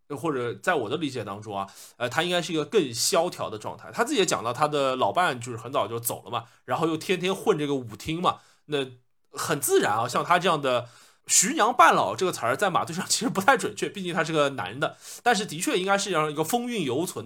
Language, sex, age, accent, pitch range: Chinese, male, 20-39, native, 130-180 Hz